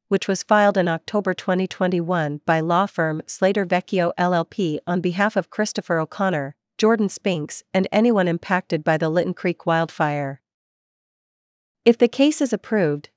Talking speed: 145 wpm